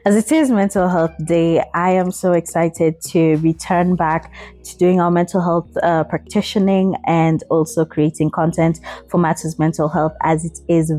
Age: 20-39